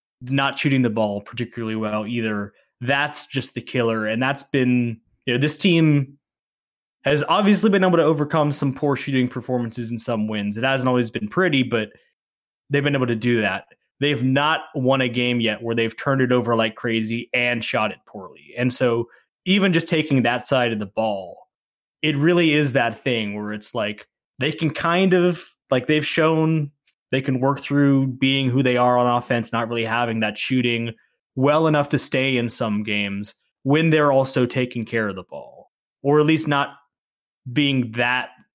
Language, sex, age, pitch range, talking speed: English, male, 20-39, 115-145 Hz, 190 wpm